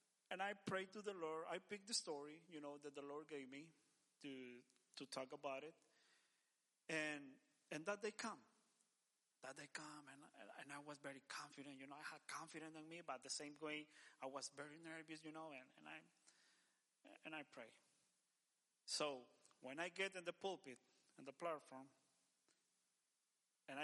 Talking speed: 175 wpm